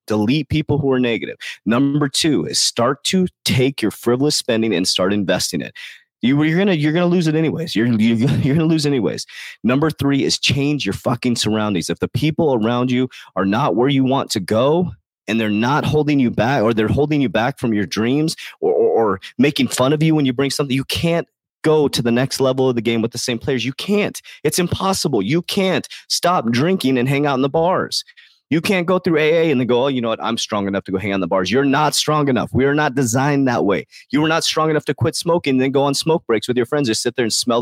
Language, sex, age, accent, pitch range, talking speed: English, male, 30-49, American, 115-150 Hz, 255 wpm